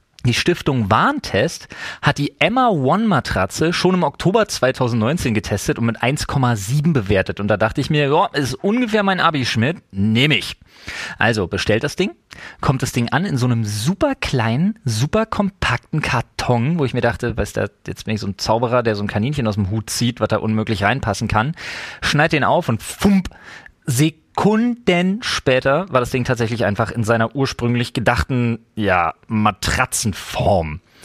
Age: 30-49